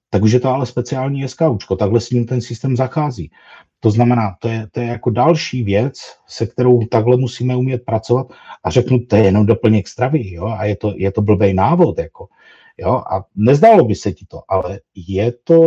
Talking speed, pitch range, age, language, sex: 205 wpm, 105-130 Hz, 50-69, Czech, male